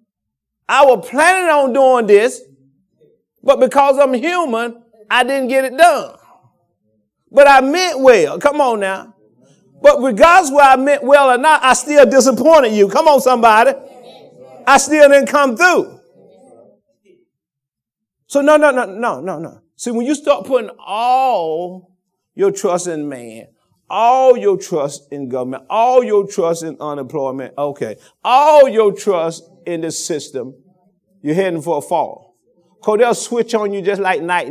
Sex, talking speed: male, 155 wpm